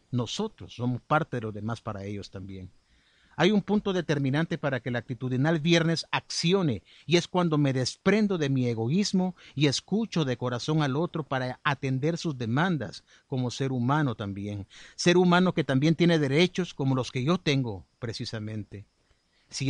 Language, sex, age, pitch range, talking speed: Spanish, male, 50-69, 130-175 Hz, 165 wpm